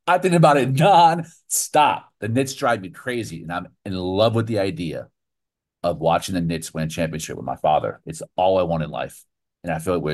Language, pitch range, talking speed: English, 80-100 Hz, 225 wpm